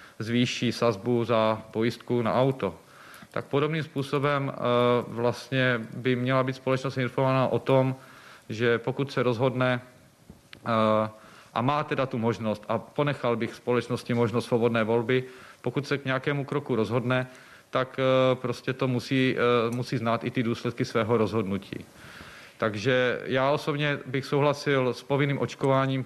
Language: Czech